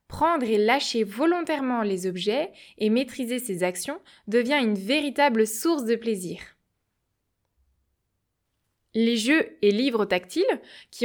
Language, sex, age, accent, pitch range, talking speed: French, female, 20-39, French, 190-240 Hz, 120 wpm